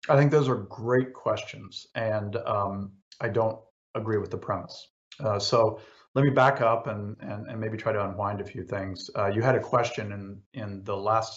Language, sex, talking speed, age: English, male, 205 wpm, 50-69